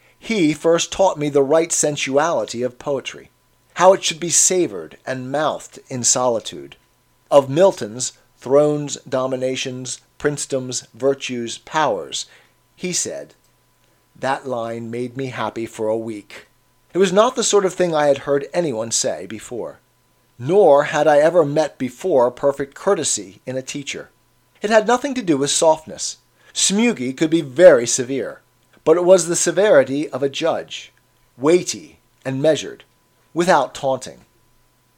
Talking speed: 145 wpm